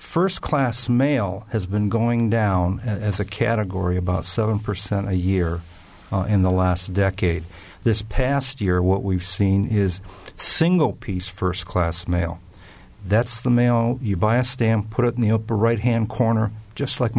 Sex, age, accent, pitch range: male, 50-69, American, 95-115 Hz